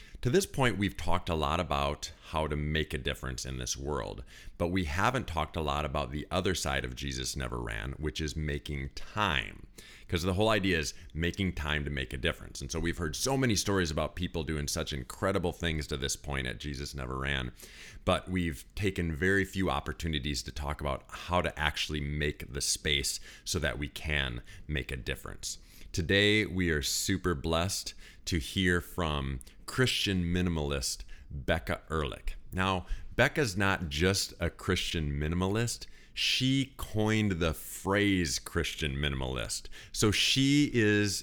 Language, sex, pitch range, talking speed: English, male, 75-95 Hz, 165 wpm